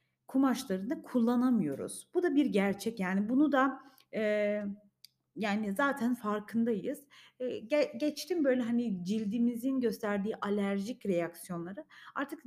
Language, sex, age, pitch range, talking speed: Turkish, female, 30-49, 210-280 Hz, 105 wpm